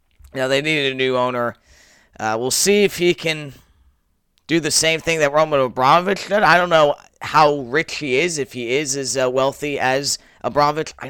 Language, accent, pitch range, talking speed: English, American, 110-155 Hz, 195 wpm